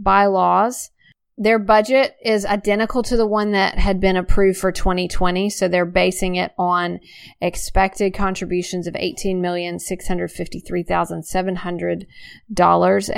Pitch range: 175-205 Hz